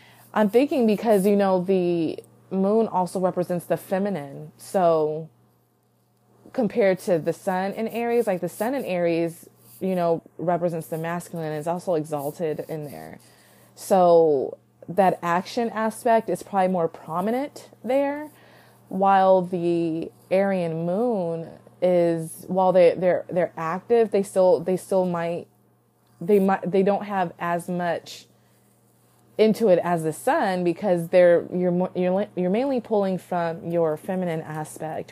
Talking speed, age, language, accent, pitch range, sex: 140 wpm, 20-39, English, American, 165-195 Hz, female